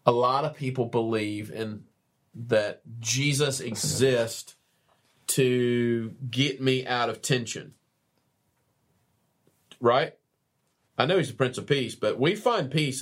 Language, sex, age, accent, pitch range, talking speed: English, male, 40-59, American, 120-150 Hz, 125 wpm